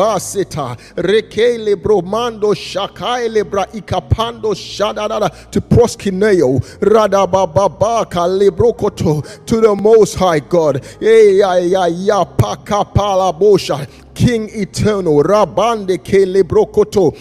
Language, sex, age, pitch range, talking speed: English, male, 30-49, 185-225 Hz, 95 wpm